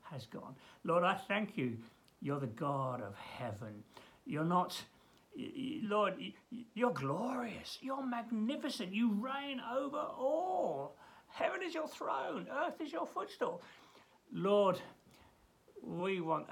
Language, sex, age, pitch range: English, male, 60-79, 140-230 Hz